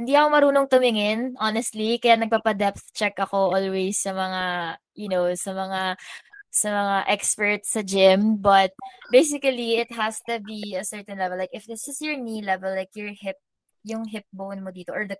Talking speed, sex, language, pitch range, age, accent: 185 wpm, female, Filipino, 195-250 Hz, 20-39, native